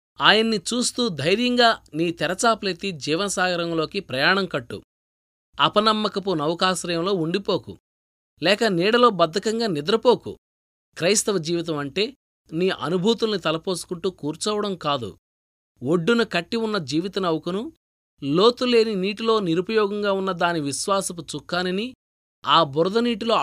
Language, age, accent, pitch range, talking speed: Telugu, 20-39, native, 155-205 Hz, 90 wpm